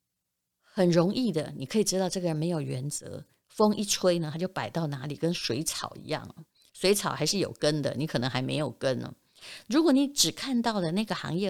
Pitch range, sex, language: 150-210 Hz, female, Chinese